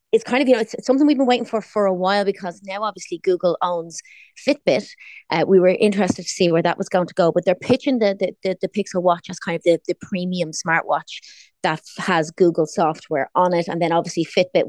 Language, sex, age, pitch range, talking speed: English, female, 30-49, 165-205 Hz, 235 wpm